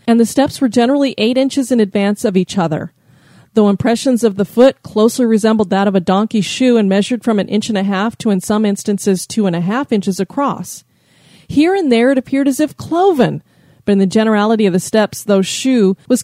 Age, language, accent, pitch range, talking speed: 40-59, English, American, 200-255 Hz, 220 wpm